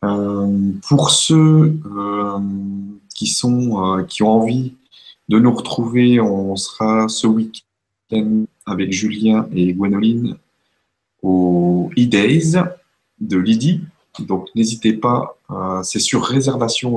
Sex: male